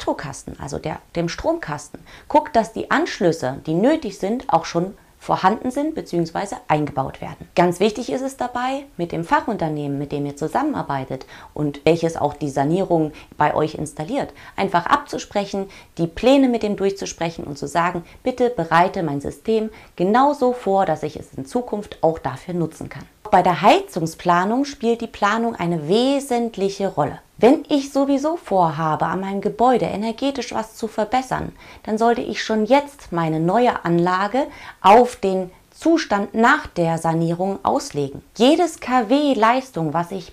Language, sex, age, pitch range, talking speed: German, female, 30-49, 165-245 Hz, 155 wpm